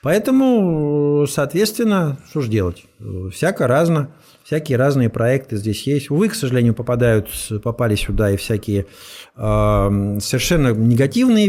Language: Russian